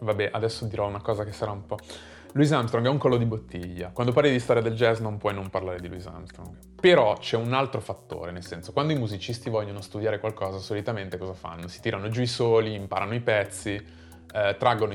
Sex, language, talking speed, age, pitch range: male, Italian, 220 wpm, 20-39, 95-125 Hz